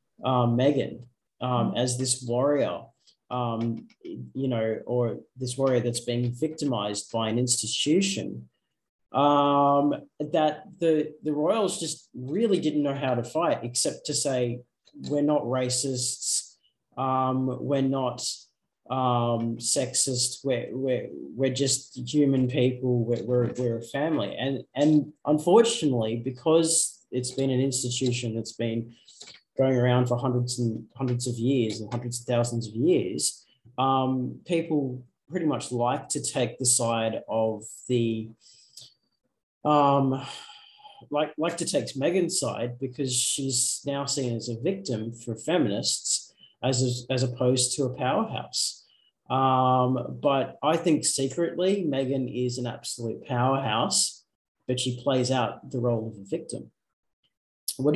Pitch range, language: 120-140 Hz, English